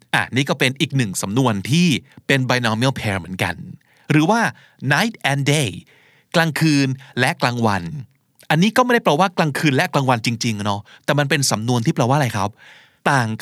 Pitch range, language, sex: 120-170 Hz, Thai, male